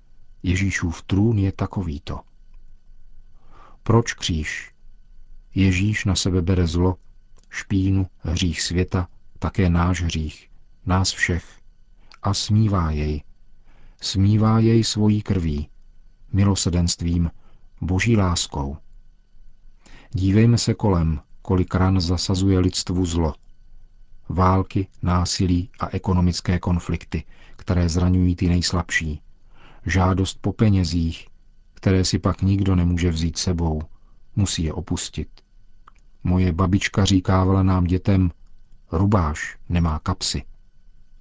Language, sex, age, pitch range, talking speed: Czech, male, 50-69, 85-100 Hz, 100 wpm